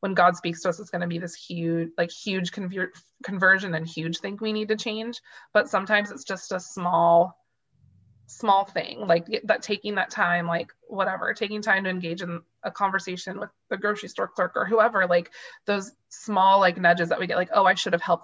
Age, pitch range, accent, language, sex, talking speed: 20-39, 170-210 Hz, American, English, female, 210 wpm